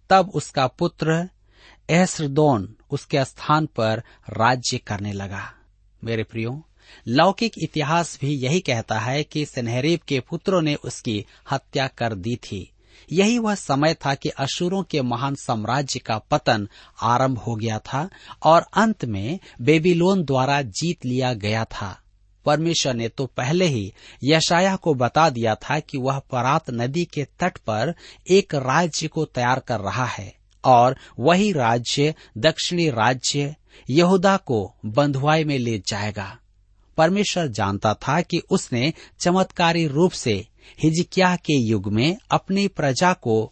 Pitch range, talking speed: 115-160 Hz, 140 wpm